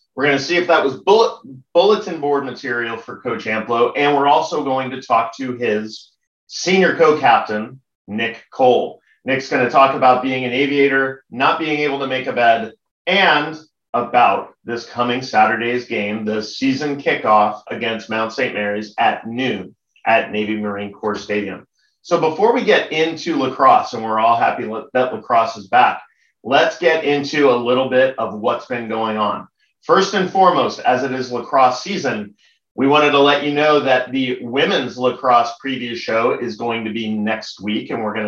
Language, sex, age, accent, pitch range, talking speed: English, male, 30-49, American, 110-145 Hz, 180 wpm